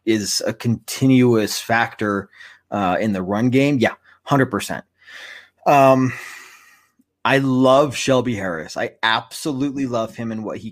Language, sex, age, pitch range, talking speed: English, male, 30-49, 110-135 Hz, 135 wpm